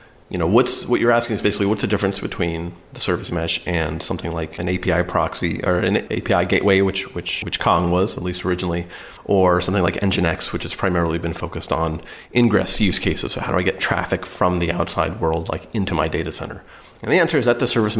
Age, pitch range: 30-49, 90-110 Hz